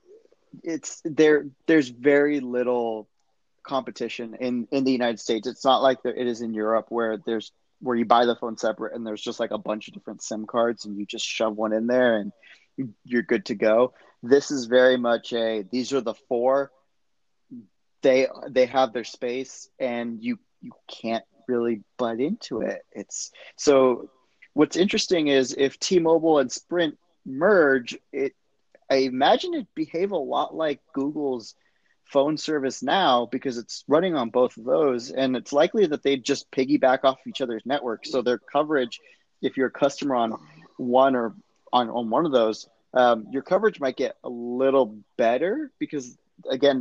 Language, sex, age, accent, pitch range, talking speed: English, male, 30-49, American, 115-145 Hz, 175 wpm